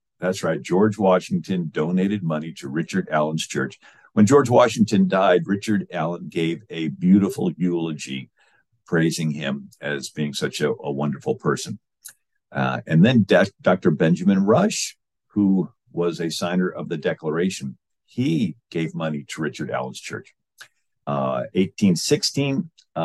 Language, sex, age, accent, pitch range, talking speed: English, male, 50-69, American, 75-105 Hz, 135 wpm